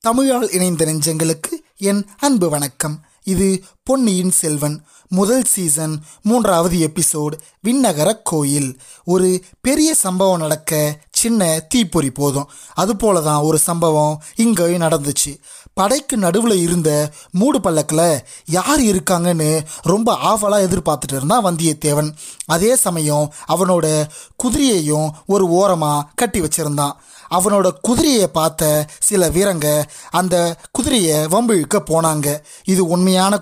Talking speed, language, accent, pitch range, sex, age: 105 wpm, Tamil, native, 155-195 Hz, male, 20-39